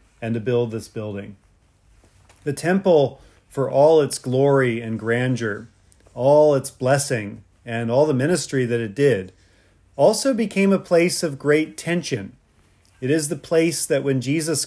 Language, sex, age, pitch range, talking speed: English, male, 40-59, 110-150 Hz, 150 wpm